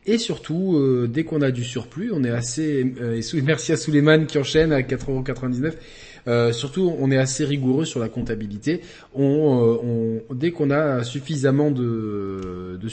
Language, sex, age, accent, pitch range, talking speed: French, male, 20-39, French, 125-165 Hz, 185 wpm